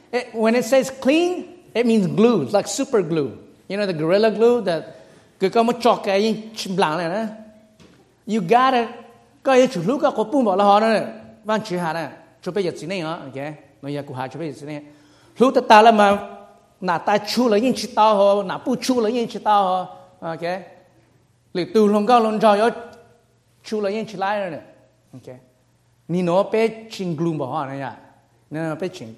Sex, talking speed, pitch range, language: male, 60 wpm, 155-235 Hz, English